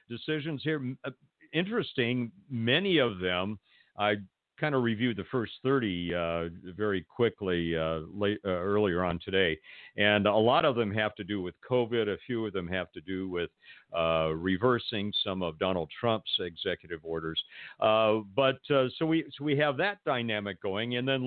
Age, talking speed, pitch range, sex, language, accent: 50-69, 170 wpm, 100-140 Hz, male, English, American